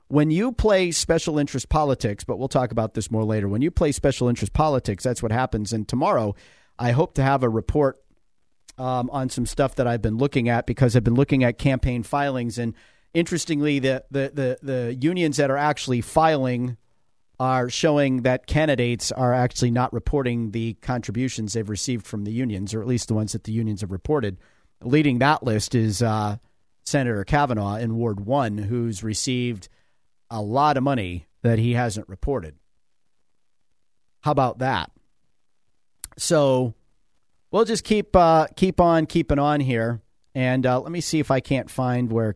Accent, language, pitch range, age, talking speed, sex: American, English, 115-140 Hz, 40-59, 175 wpm, male